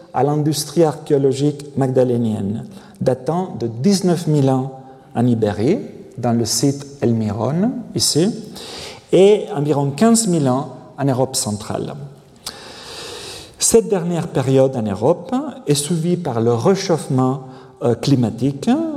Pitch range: 125-180 Hz